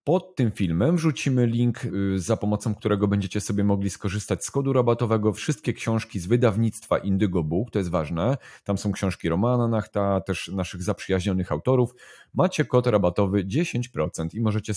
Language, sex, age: Polish, male, 30-49